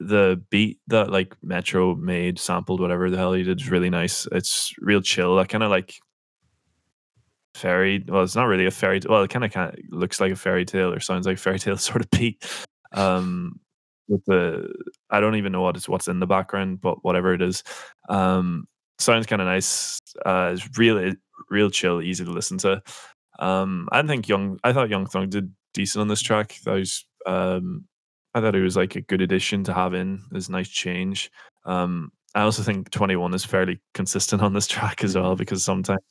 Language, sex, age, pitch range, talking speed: English, male, 10-29, 90-100 Hz, 210 wpm